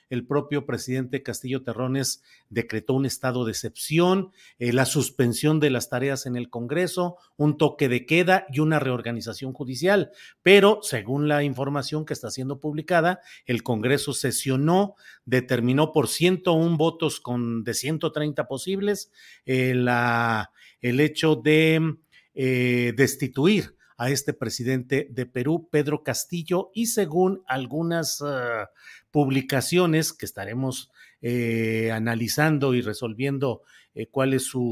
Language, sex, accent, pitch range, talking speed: Spanish, male, Mexican, 125-160 Hz, 125 wpm